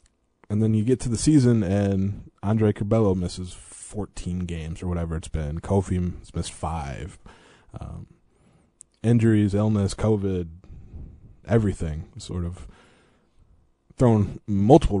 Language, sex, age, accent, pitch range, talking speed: English, male, 20-39, American, 90-115 Hz, 120 wpm